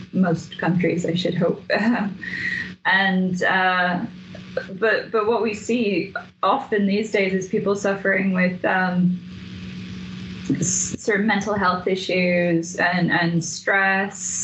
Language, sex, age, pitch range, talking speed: English, female, 10-29, 180-210 Hz, 110 wpm